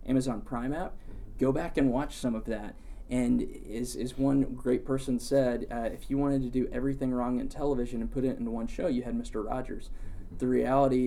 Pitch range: 115-130 Hz